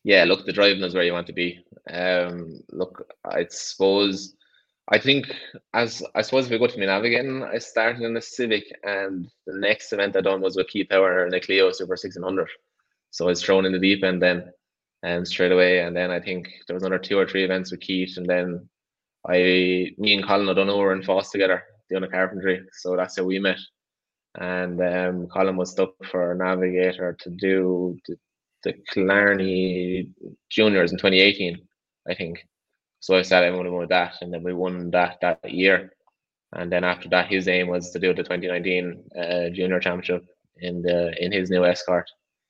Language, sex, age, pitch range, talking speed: English, male, 20-39, 90-95 Hz, 195 wpm